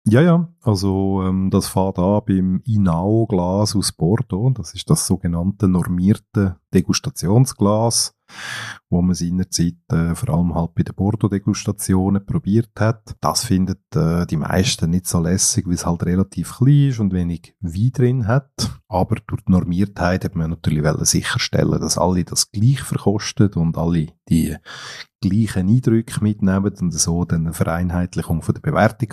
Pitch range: 90-115 Hz